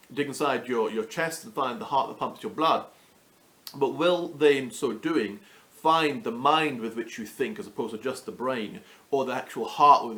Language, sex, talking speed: English, male, 220 wpm